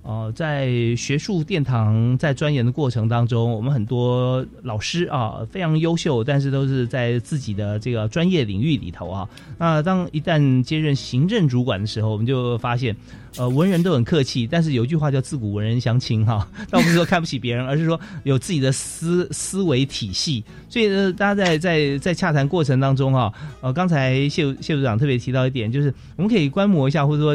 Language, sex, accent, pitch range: Chinese, male, native, 120-165 Hz